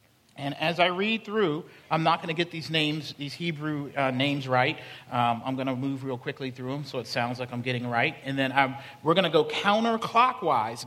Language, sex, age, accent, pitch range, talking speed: English, male, 50-69, American, 135-175 Hz, 225 wpm